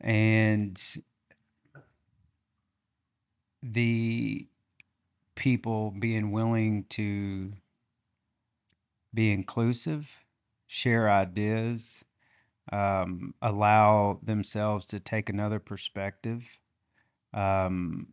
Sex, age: male, 40-59